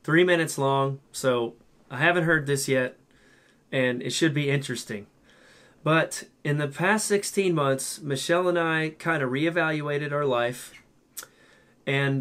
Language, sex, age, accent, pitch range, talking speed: English, male, 30-49, American, 130-150 Hz, 145 wpm